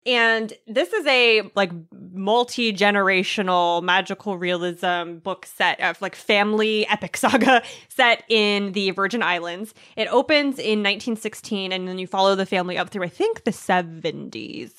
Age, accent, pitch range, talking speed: 20-39, American, 180-220 Hz, 145 wpm